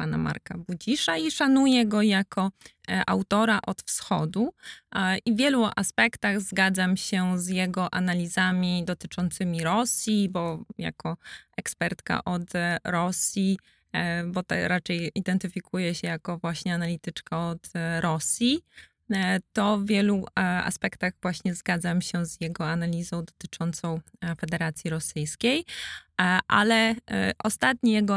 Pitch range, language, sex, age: 180-225 Hz, Polish, female, 20-39